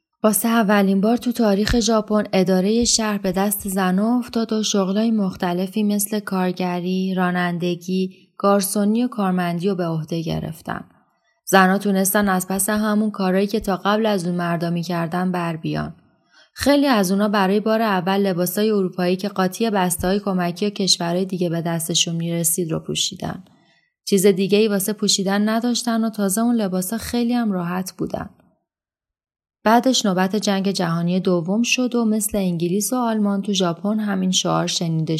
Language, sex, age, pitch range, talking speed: Persian, female, 20-39, 180-210 Hz, 150 wpm